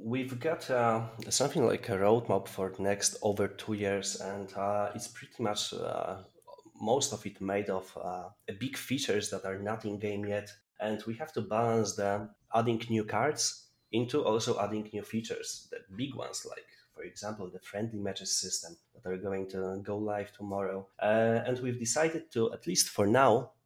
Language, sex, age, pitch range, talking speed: English, male, 30-49, 100-120 Hz, 190 wpm